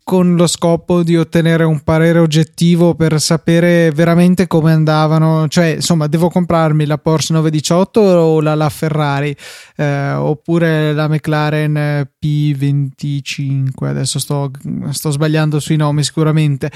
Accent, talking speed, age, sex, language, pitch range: native, 130 wpm, 20-39, male, Italian, 150-175 Hz